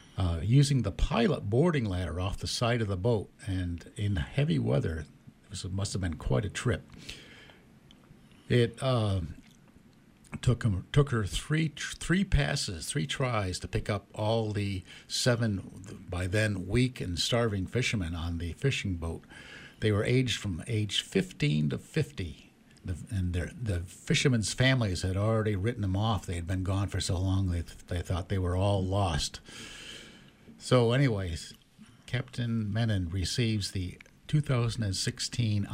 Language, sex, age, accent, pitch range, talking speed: English, male, 60-79, American, 90-120 Hz, 155 wpm